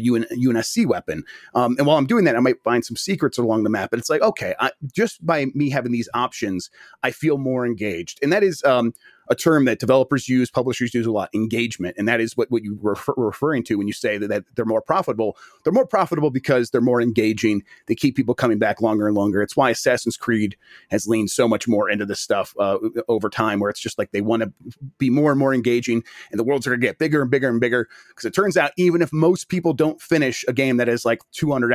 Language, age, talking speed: English, 30-49, 250 wpm